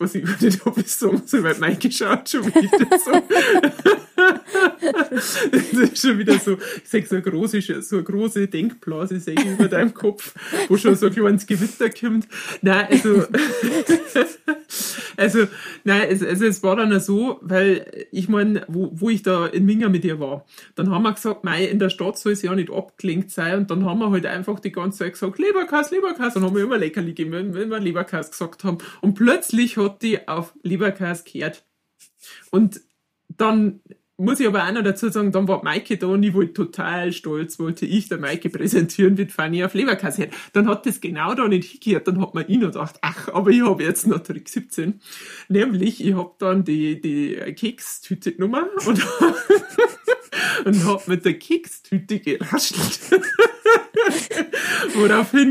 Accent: German